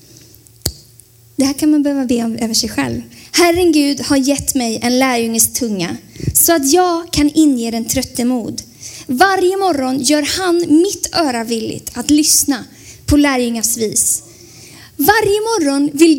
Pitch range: 230-345 Hz